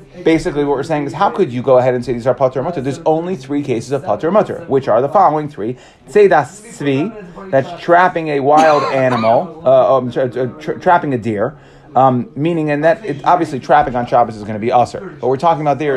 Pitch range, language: 120-160 Hz, English